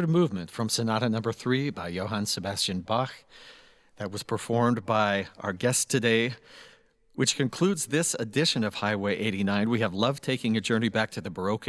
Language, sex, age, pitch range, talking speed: English, male, 50-69, 105-135 Hz, 170 wpm